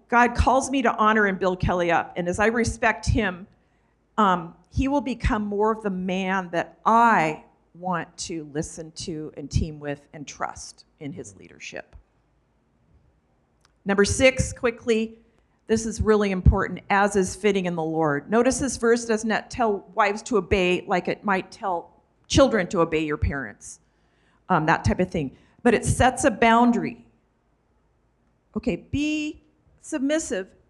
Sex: female